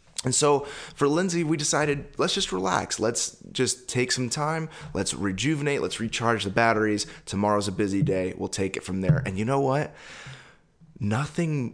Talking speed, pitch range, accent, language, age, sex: 175 wpm, 100-135 Hz, American, English, 20-39, male